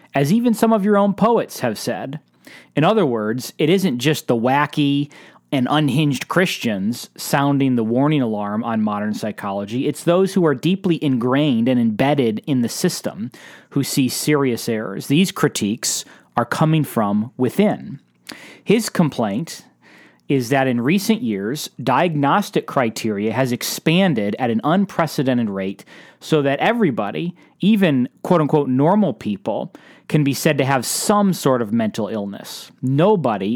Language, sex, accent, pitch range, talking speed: English, male, American, 125-175 Hz, 145 wpm